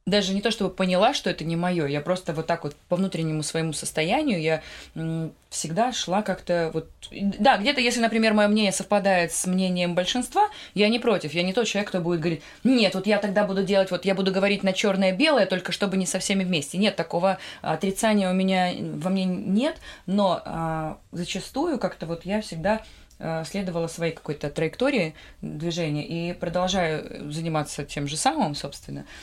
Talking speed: 180 wpm